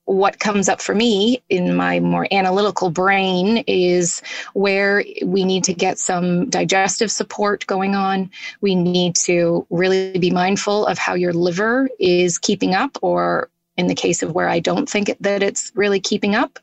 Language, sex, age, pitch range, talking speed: English, female, 20-39, 180-205 Hz, 175 wpm